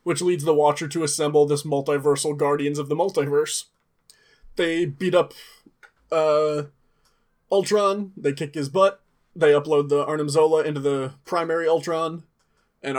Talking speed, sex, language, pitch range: 145 wpm, male, English, 145-165 Hz